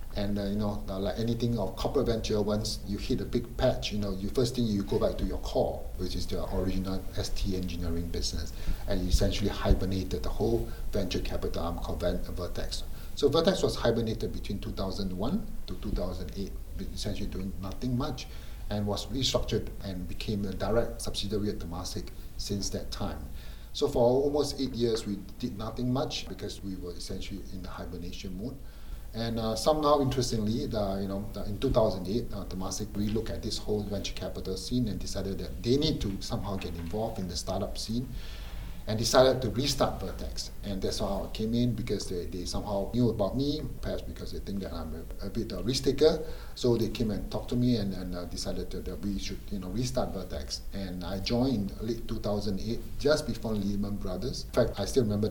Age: 60-79